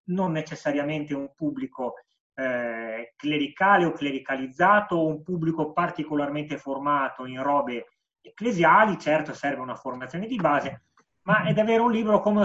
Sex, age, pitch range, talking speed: male, 30-49, 135-175 Hz, 135 wpm